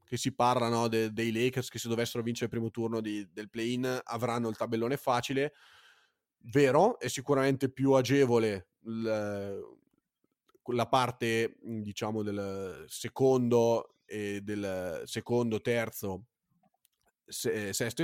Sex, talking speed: male, 125 wpm